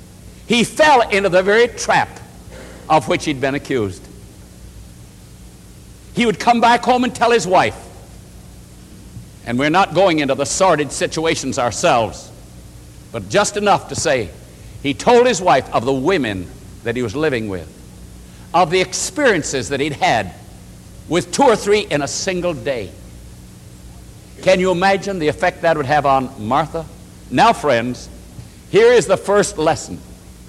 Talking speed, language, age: 150 wpm, English, 60-79